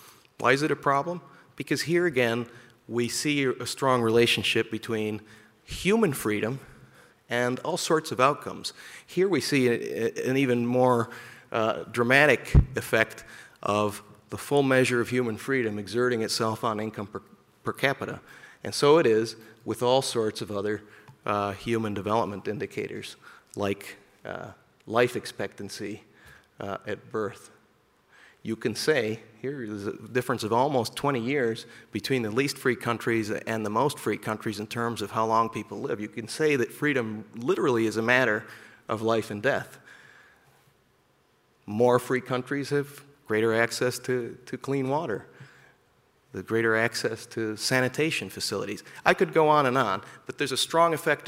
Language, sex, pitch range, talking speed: English, male, 110-135 Hz, 155 wpm